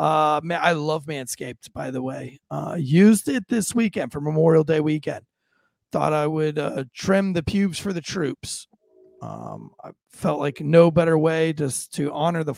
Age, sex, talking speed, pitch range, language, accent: 30-49, male, 180 wpm, 145-175 Hz, English, American